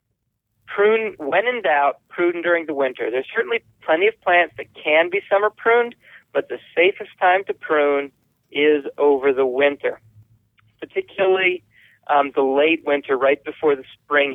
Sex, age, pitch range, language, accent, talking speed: male, 40-59, 135-175 Hz, English, American, 155 wpm